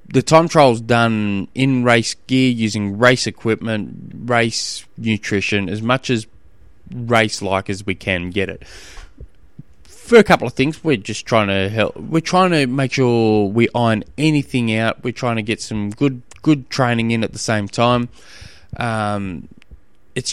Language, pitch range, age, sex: English, 95-120 Hz, 20-39, male